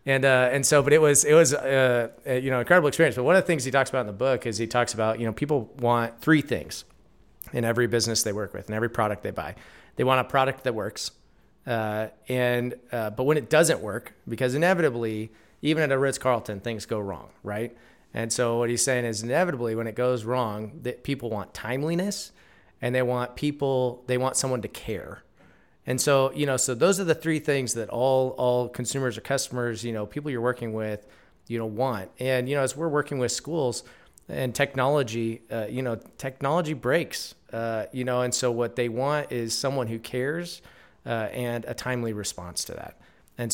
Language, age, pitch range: English, 30-49, 115-135 Hz